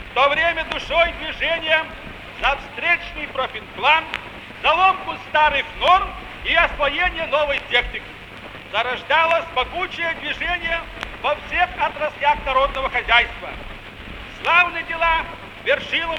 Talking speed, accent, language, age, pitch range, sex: 100 wpm, native, Russian, 50-69, 280-330 Hz, male